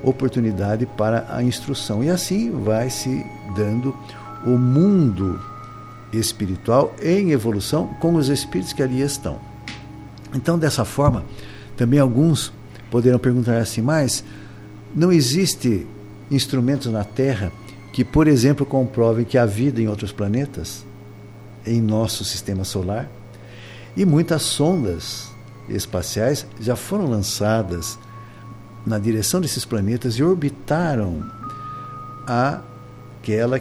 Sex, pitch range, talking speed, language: male, 110-135 Hz, 110 wpm, Portuguese